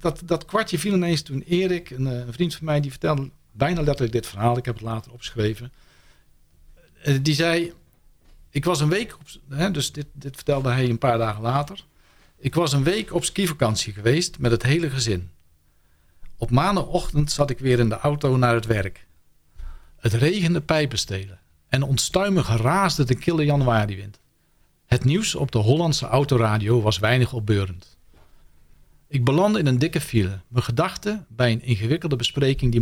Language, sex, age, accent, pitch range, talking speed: Dutch, male, 50-69, Dutch, 95-155 Hz, 170 wpm